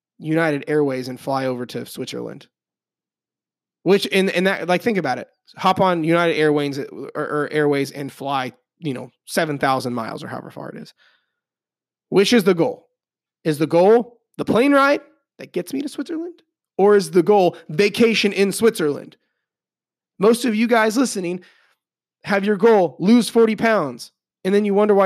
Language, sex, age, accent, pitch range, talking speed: English, male, 30-49, American, 150-200 Hz, 170 wpm